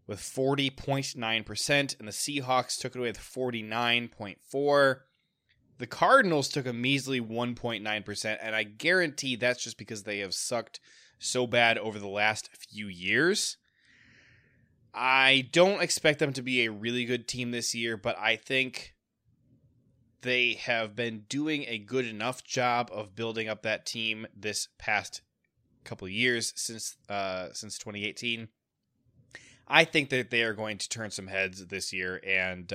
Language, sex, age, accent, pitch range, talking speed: English, male, 20-39, American, 105-130 Hz, 150 wpm